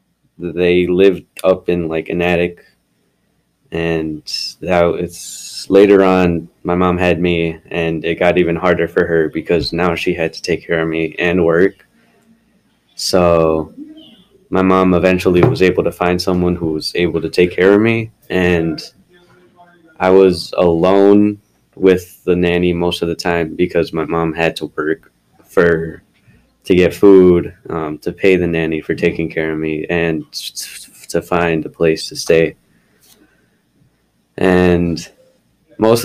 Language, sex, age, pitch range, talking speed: English, male, 20-39, 85-95 Hz, 150 wpm